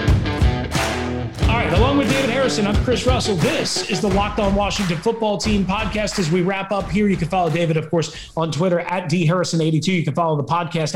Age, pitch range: 30-49, 160-235 Hz